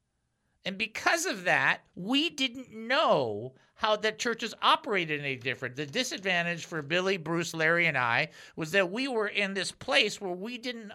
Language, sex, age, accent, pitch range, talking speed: English, male, 50-69, American, 155-205 Hz, 170 wpm